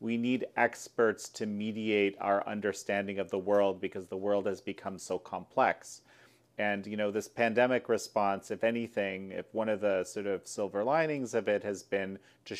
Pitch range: 100-115 Hz